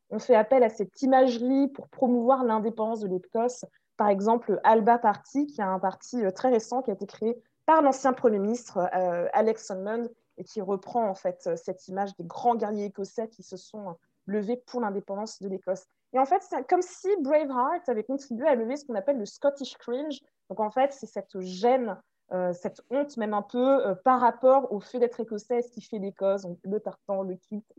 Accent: French